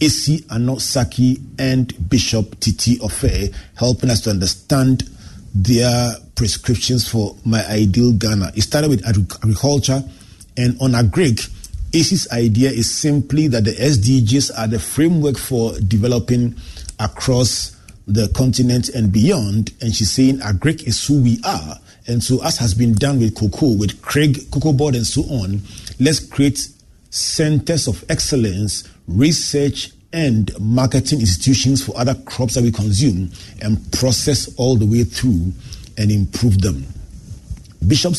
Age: 40-59